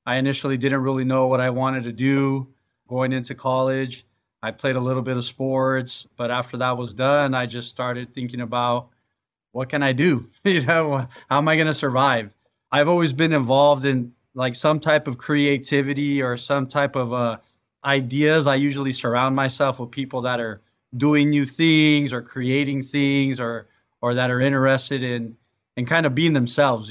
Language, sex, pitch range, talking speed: English, male, 125-140 Hz, 185 wpm